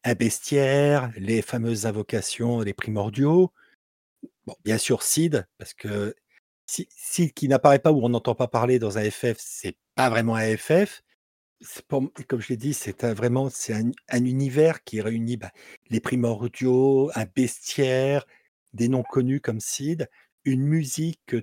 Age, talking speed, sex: 50-69, 160 wpm, male